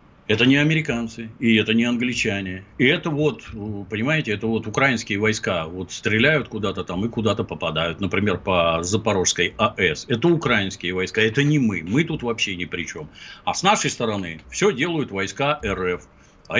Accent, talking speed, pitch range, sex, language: native, 170 wpm, 100-140 Hz, male, Russian